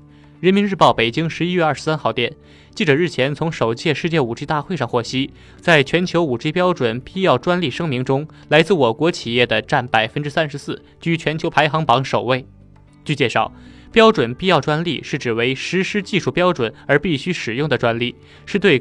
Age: 20-39